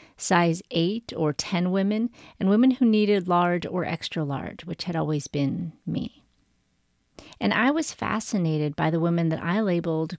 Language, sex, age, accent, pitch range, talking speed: English, female, 40-59, American, 155-210 Hz, 165 wpm